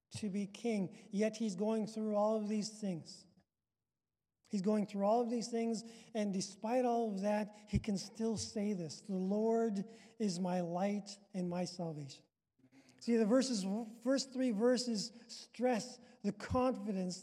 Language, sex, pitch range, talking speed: English, male, 200-235 Hz, 155 wpm